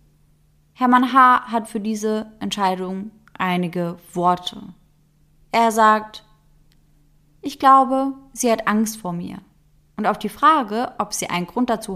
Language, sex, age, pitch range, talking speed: German, female, 20-39, 175-215 Hz, 130 wpm